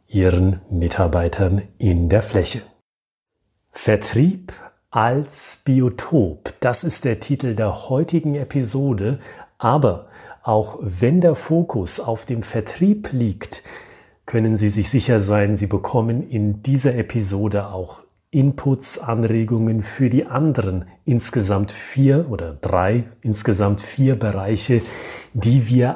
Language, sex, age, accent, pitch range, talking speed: German, male, 40-59, German, 100-130 Hz, 115 wpm